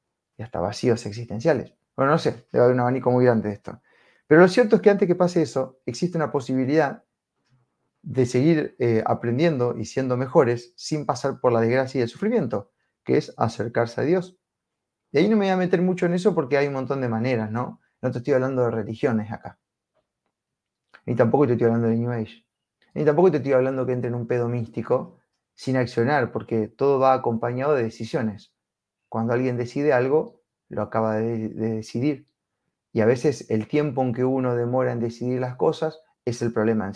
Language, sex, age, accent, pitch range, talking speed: Spanish, male, 30-49, Argentinian, 115-145 Hz, 200 wpm